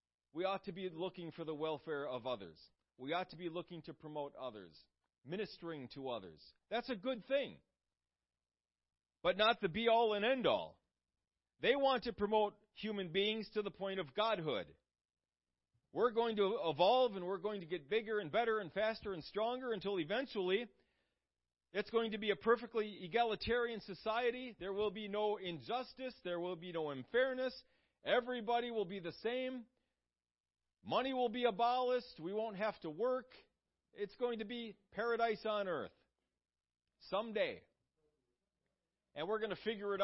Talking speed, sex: 160 wpm, male